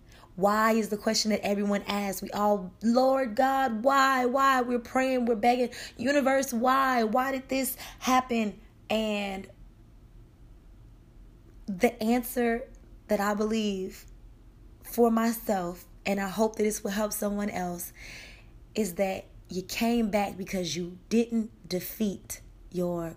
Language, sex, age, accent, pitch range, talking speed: English, female, 20-39, American, 185-235 Hz, 130 wpm